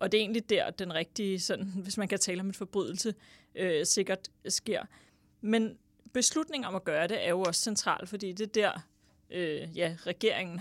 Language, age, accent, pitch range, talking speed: English, 30-49, Danish, 180-220 Hz, 200 wpm